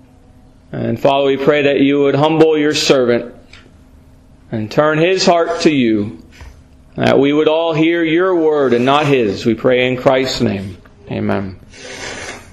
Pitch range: 135-205 Hz